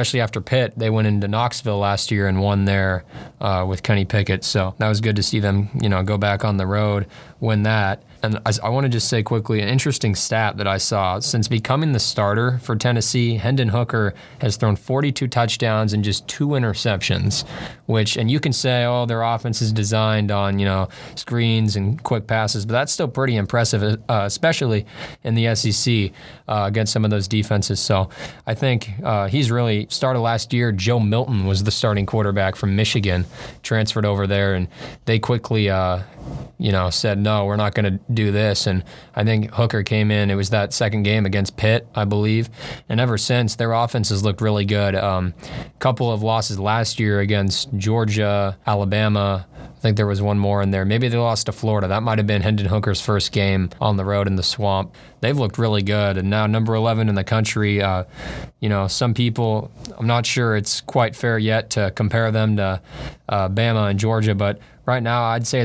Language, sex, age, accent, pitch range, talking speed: English, male, 20-39, American, 100-115 Hz, 205 wpm